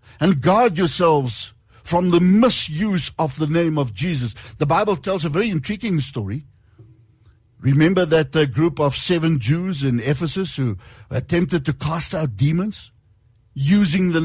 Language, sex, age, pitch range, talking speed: English, male, 60-79, 115-185 Hz, 145 wpm